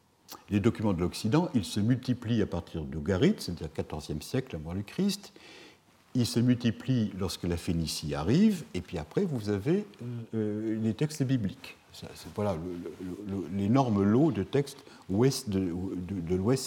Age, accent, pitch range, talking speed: 60-79, French, 95-130 Hz, 175 wpm